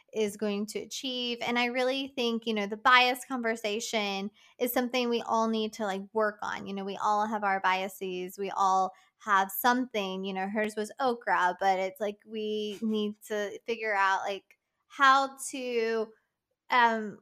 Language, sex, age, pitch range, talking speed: English, female, 20-39, 200-240 Hz, 175 wpm